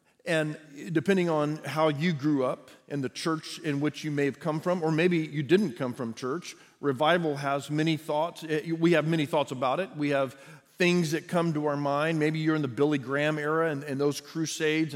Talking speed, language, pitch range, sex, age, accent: 215 wpm, English, 145-175 Hz, male, 40-59, American